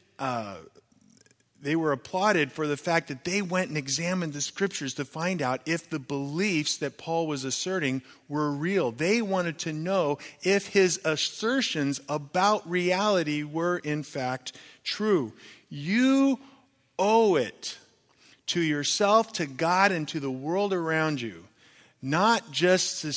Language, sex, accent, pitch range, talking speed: English, male, American, 130-175 Hz, 140 wpm